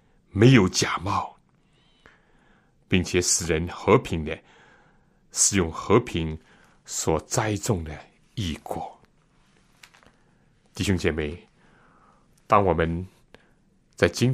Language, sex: Chinese, male